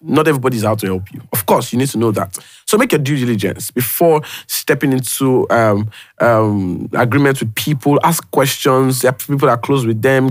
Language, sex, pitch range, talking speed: English, male, 120-150 Hz, 200 wpm